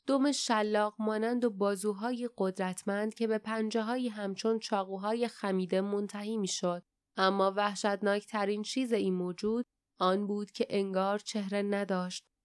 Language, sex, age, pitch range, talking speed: Persian, female, 10-29, 200-235 Hz, 130 wpm